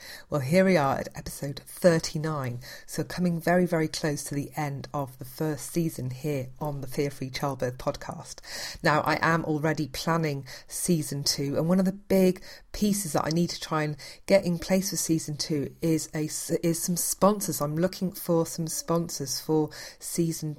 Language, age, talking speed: English, 40-59, 185 wpm